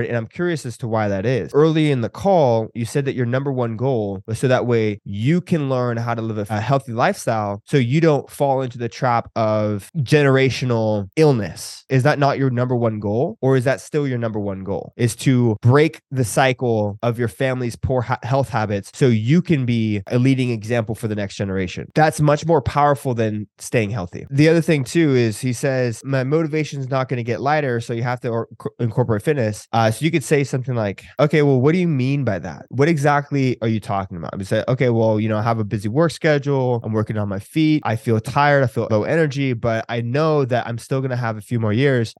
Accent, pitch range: American, 110-145 Hz